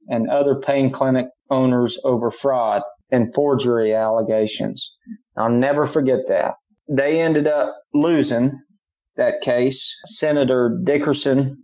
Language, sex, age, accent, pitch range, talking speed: English, male, 30-49, American, 120-145 Hz, 115 wpm